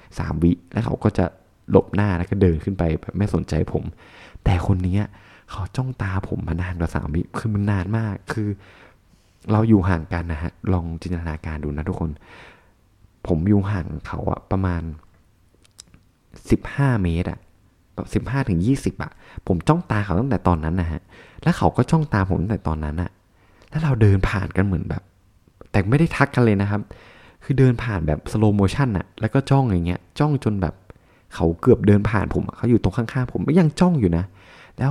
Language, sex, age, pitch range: Thai, male, 20-39, 90-110 Hz